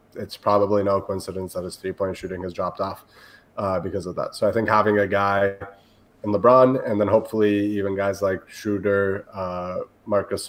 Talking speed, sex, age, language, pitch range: 185 wpm, male, 20-39, English, 95-110 Hz